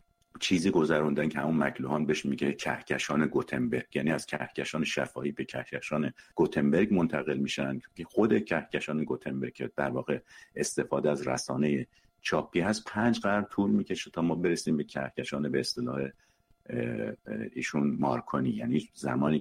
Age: 50-69